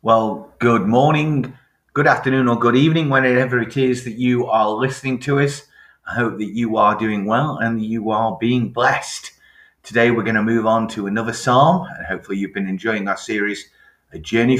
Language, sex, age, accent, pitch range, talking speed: English, male, 30-49, British, 95-125 Hz, 190 wpm